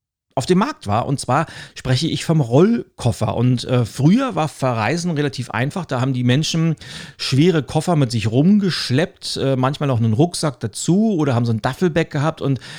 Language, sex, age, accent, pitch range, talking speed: German, male, 40-59, German, 120-160 Hz, 185 wpm